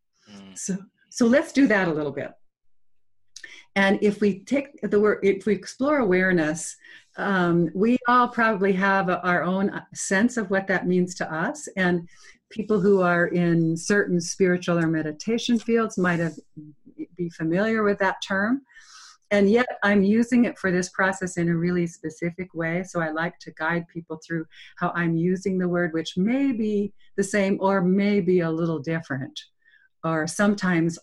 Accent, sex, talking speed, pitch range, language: American, female, 170 wpm, 160-205 Hz, English